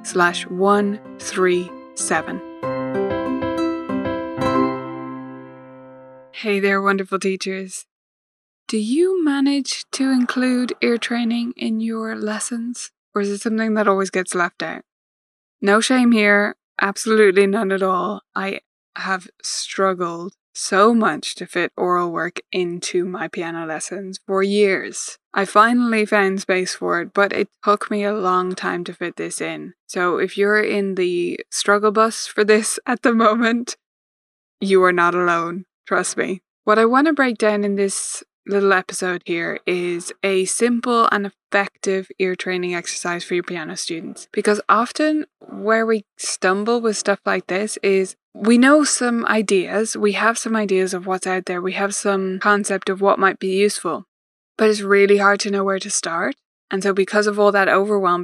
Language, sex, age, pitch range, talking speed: English, female, 20-39, 185-225 Hz, 155 wpm